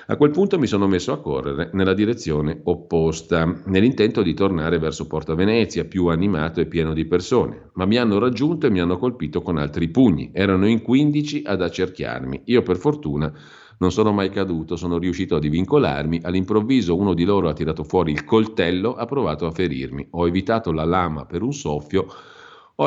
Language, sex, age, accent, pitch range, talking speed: Italian, male, 40-59, native, 80-100 Hz, 185 wpm